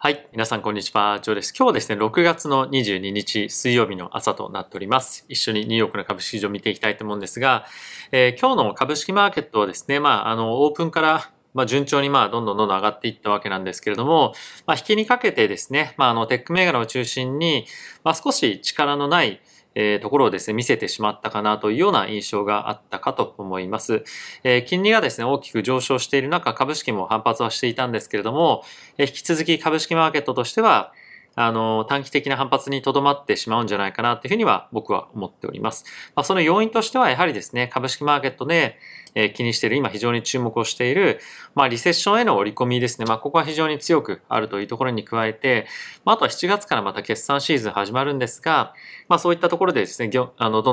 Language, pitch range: Japanese, 110-150 Hz